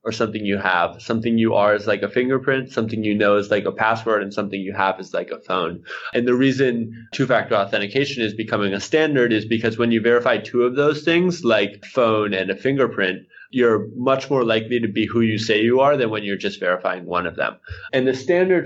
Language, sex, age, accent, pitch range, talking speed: English, male, 20-39, American, 105-130 Hz, 230 wpm